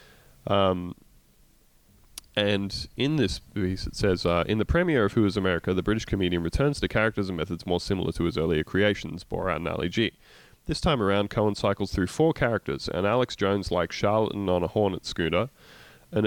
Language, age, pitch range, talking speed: English, 20-39, 90-110 Hz, 185 wpm